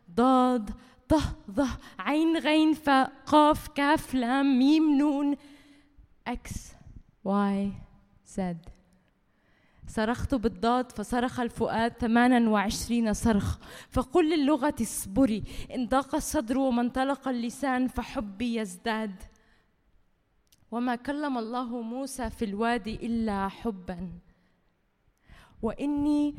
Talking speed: 85 wpm